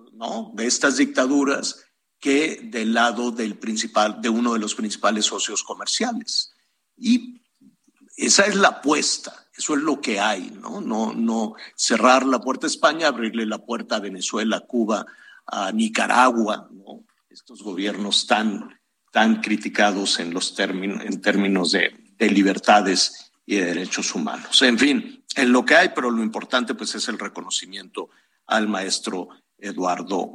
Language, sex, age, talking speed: Spanish, male, 50-69, 135 wpm